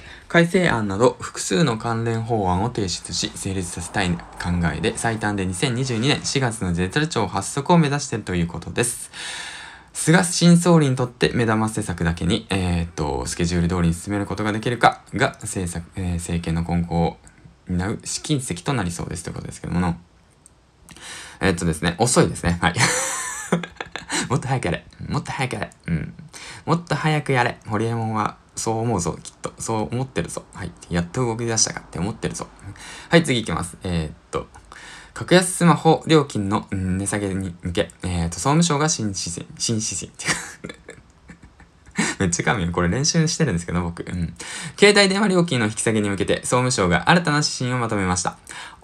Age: 20-39